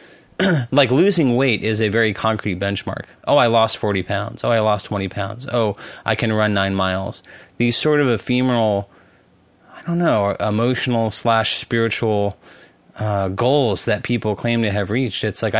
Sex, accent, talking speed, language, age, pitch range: male, American, 165 wpm, English, 30-49, 100-125 Hz